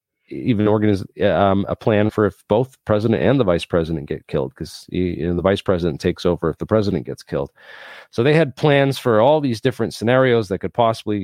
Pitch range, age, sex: 90-110 Hz, 40-59, male